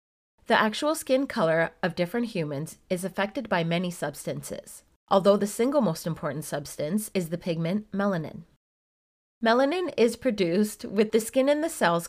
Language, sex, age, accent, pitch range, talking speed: English, female, 30-49, American, 170-230 Hz, 155 wpm